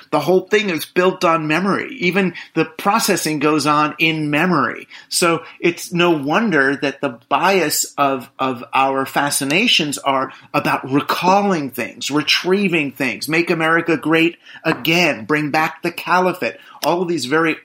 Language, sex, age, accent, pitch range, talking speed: English, male, 30-49, American, 135-170 Hz, 145 wpm